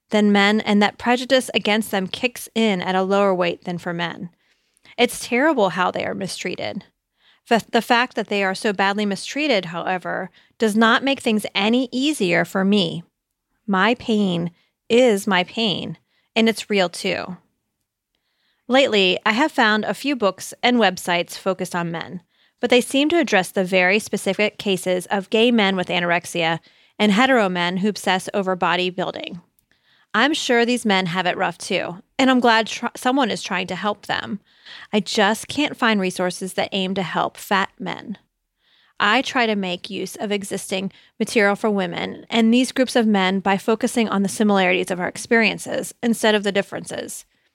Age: 30-49